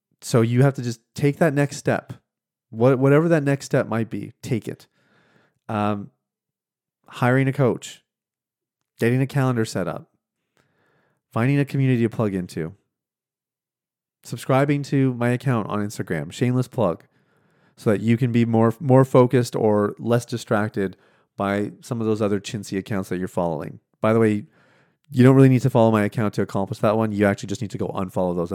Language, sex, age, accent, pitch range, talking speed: English, male, 30-49, American, 110-140 Hz, 180 wpm